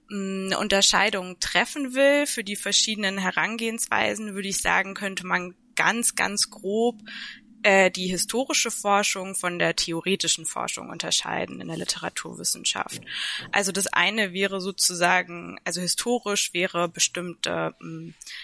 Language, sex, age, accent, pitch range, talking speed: German, female, 20-39, German, 170-200 Hz, 125 wpm